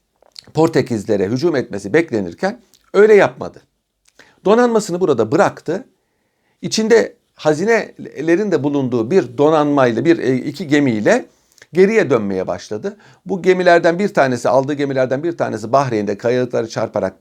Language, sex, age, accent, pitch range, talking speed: Turkish, male, 60-79, native, 120-190 Hz, 110 wpm